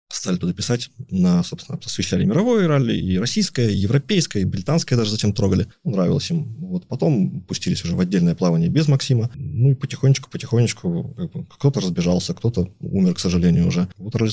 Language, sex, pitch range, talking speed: Russian, male, 95-145 Hz, 165 wpm